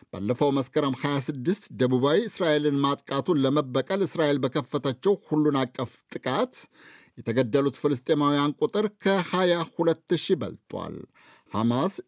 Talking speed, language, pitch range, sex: 90 wpm, Amharic, 140-165 Hz, male